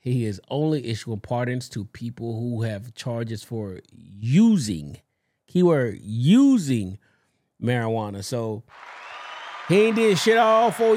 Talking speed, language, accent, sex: 120 wpm, English, American, male